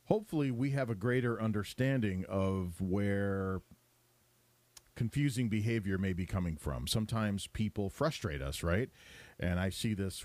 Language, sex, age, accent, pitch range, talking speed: English, male, 40-59, American, 85-110 Hz, 135 wpm